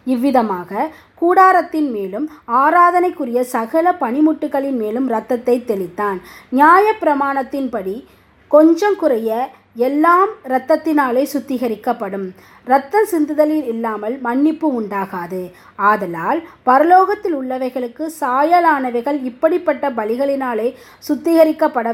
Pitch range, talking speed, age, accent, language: 230-310 Hz, 75 wpm, 20-39, native, Tamil